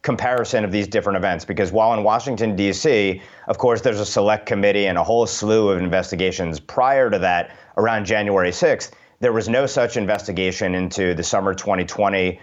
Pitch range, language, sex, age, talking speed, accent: 95-115 Hz, English, male, 30-49, 180 wpm, American